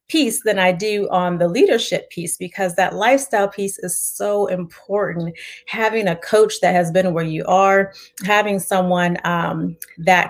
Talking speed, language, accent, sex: 155 wpm, English, American, female